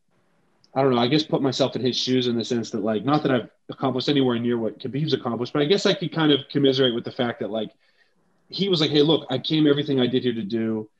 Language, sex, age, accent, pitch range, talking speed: English, male, 30-49, American, 120-150 Hz, 275 wpm